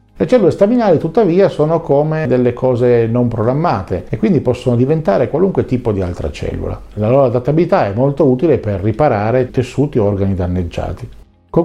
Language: Italian